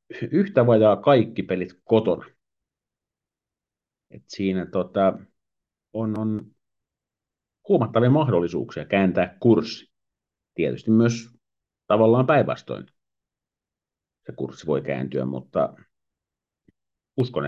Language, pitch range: Finnish, 90-115 Hz